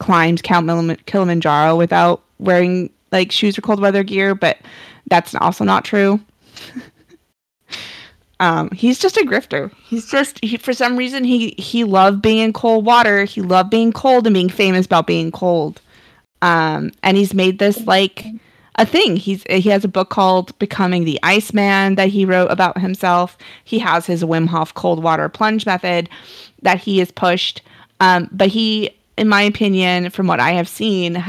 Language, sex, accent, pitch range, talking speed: English, female, American, 175-220 Hz, 175 wpm